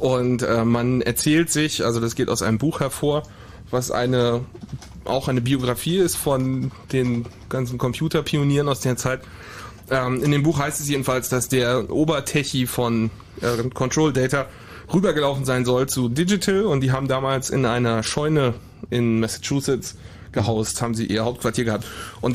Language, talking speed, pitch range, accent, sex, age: German, 160 wpm, 115-140 Hz, German, male, 30-49